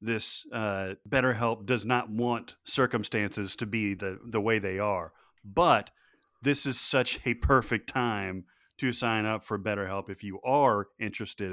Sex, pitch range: male, 100-125 Hz